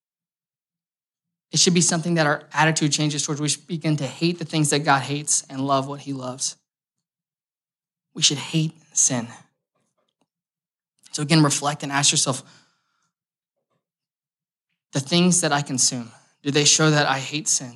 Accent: American